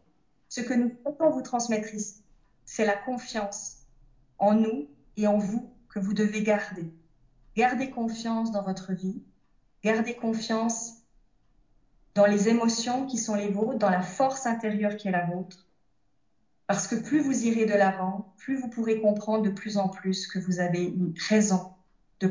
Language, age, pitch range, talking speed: French, 30-49, 185-230 Hz, 165 wpm